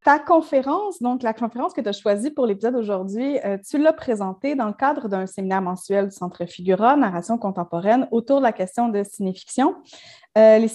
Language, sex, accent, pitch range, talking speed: French, female, Canadian, 190-245 Hz, 195 wpm